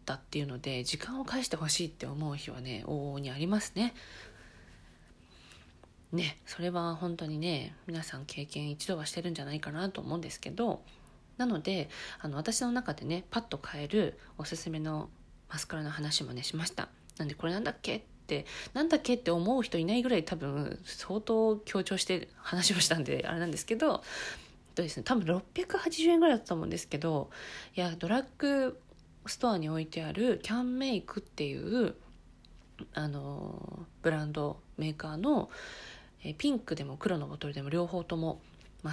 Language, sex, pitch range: Japanese, female, 155-225 Hz